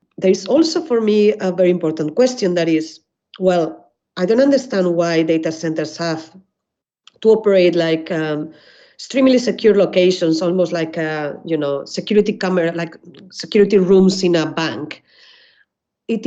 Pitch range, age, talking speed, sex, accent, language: 165-205 Hz, 40-59, 150 wpm, female, Spanish, English